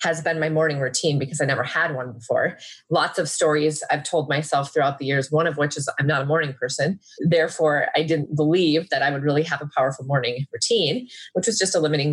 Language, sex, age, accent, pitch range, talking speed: English, female, 30-49, American, 150-165 Hz, 235 wpm